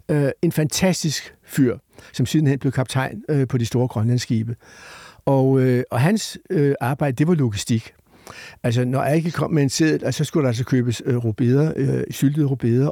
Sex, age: male, 60-79